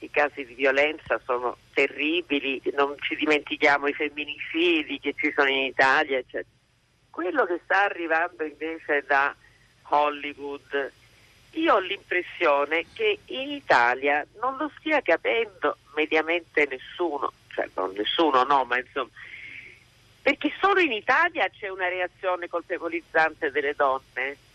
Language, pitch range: Italian, 140-215 Hz